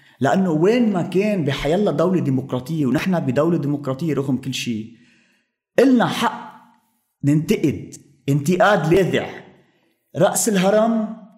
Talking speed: 105 wpm